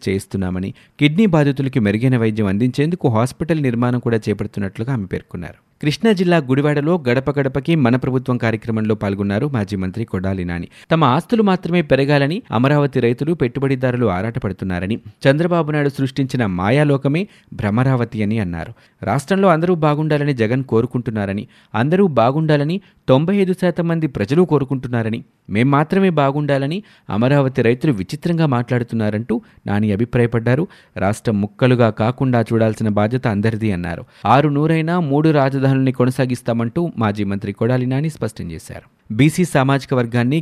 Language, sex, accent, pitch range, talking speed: Telugu, male, native, 110-150 Hz, 120 wpm